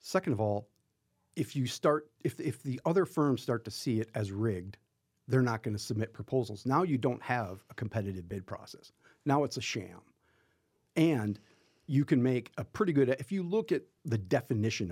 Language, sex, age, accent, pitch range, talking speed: English, male, 50-69, American, 105-140 Hz, 195 wpm